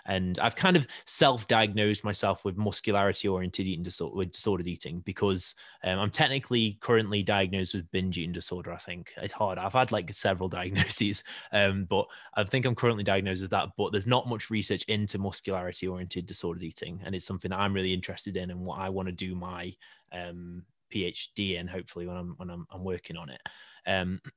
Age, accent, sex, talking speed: 20-39, British, male, 190 wpm